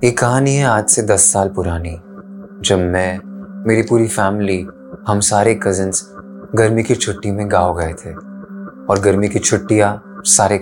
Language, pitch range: Hindi, 95-115 Hz